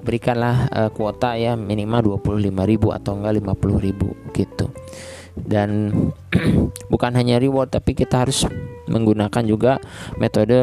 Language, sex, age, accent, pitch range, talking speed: Indonesian, male, 20-39, native, 100-125 Hz, 115 wpm